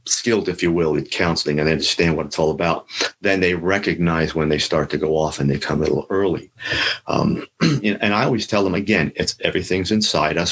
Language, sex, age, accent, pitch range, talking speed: English, male, 50-69, American, 90-115 Hz, 220 wpm